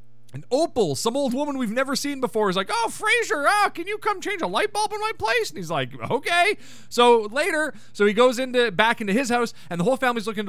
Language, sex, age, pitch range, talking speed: English, male, 30-49, 180-270 Hz, 245 wpm